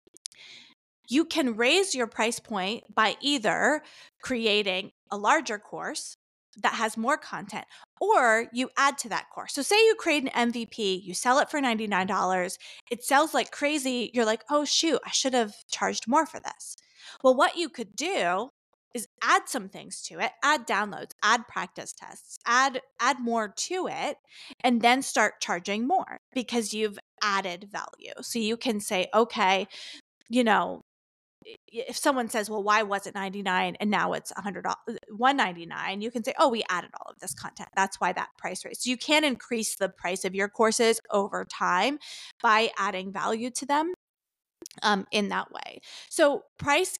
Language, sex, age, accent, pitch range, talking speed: English, female, 20-39, American, 205-270 Hz, 170 wpm